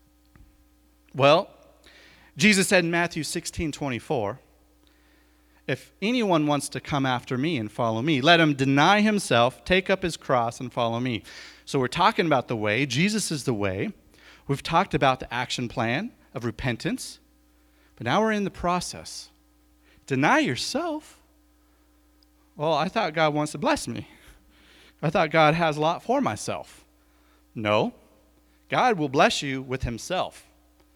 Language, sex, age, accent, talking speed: English, male, 40-59, American, 150 wpm